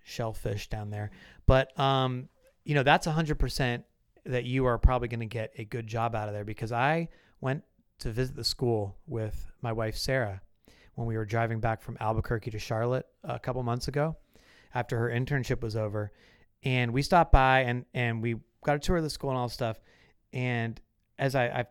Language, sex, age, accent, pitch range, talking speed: English, male, 30-49, American, 110-135 Hz, 200 wpm